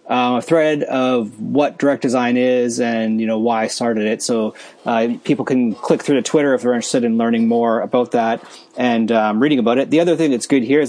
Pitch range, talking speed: 115-150 Hz, 235 wpm